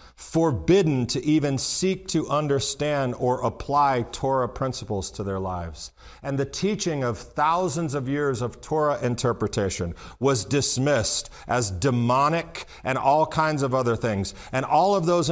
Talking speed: 145 wpm